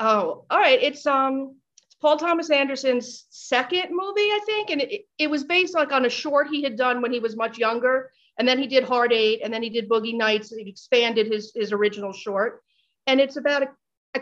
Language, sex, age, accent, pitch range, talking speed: English, female, 40-59, American, 230-295 Hz, 225 wpm